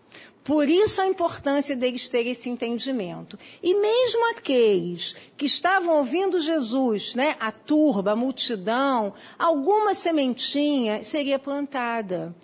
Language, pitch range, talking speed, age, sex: Portuguese, 240-340 Hz, 115 wpm, 50-69, female